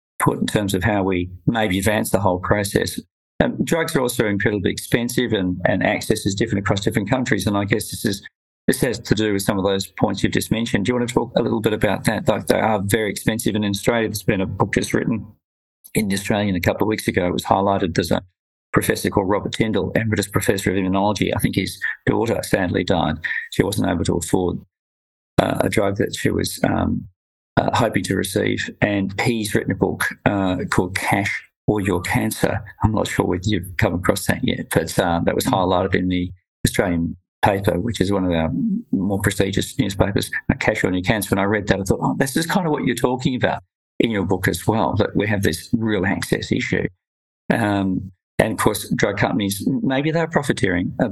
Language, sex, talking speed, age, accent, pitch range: English, male, 215 wpm, 50-69, Australian, 95-110 Hz